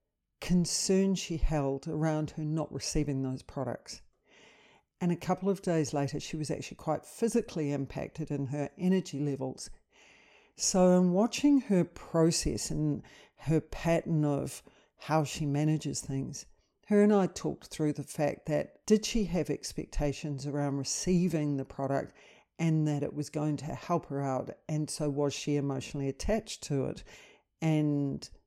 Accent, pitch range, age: Australian, 140-165 Hz, 50-69